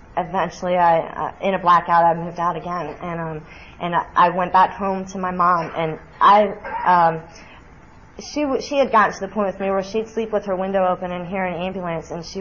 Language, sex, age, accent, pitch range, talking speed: English, female, 30-49, American, 165-190 Hz, 220 wpm